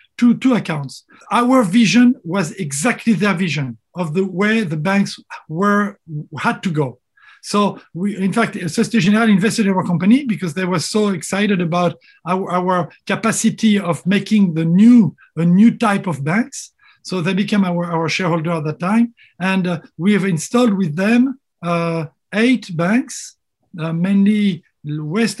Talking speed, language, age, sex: 160 wpm, English, 50-69, male